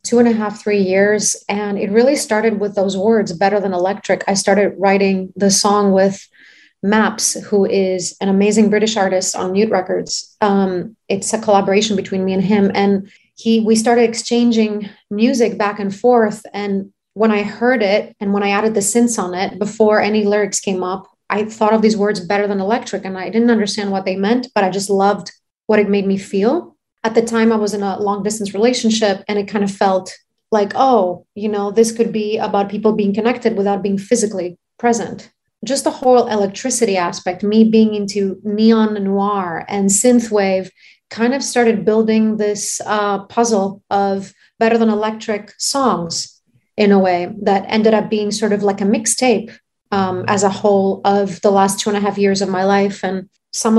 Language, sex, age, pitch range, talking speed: English, female, 30-49, 195-220 Hz, 190 wpm